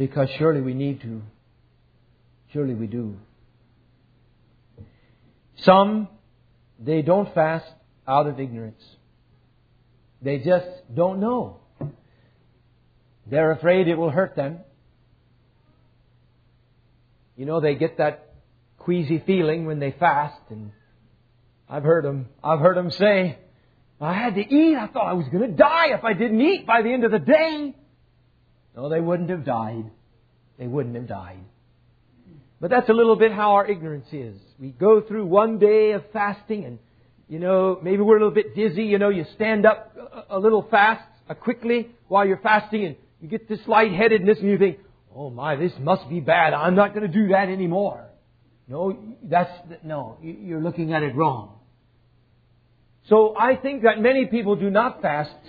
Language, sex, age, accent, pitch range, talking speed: English, male, 50-69, American, 120-205 Hz, 160 wpm